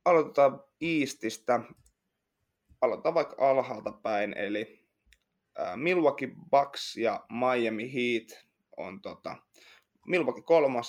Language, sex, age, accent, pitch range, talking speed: Finnish, male, 20-39, native, 110-130 Hz, 90 wpm